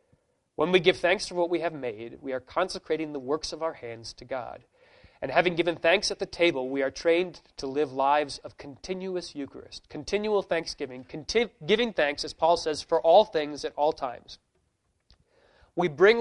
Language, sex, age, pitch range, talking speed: English, male, 30-49, 140-175 Hz, 185 wpm